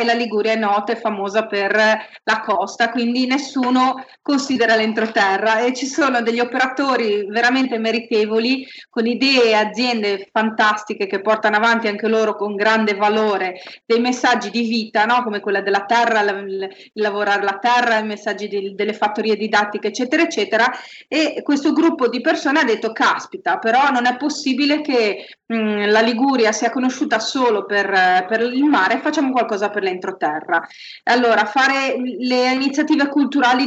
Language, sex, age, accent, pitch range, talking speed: Italian, female, 30-49, native, 215-255 Hz, 155 wpm